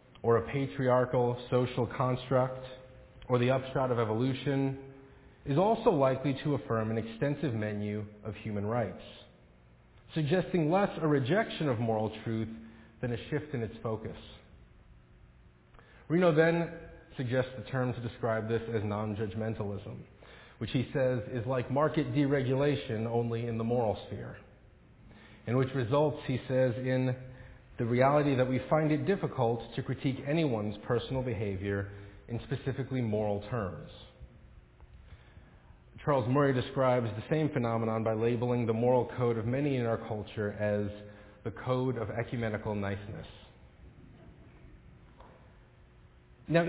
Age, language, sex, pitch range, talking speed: 30-49, English, male, 110-135 Hz, 130 wpm